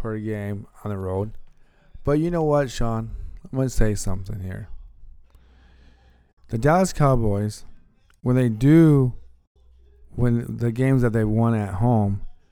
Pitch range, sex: 95-120 Hz, male